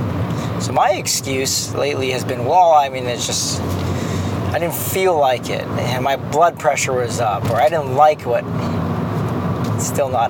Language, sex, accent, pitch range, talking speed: English, male, American, 125-145 Hz, 175 wpm